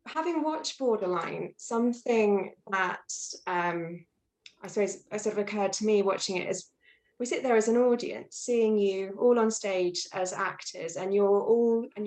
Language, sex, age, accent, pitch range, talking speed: English, female, 20-39, British, 185-230 Hz, 165 wpm